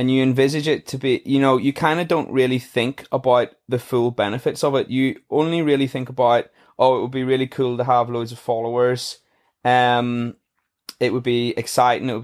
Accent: British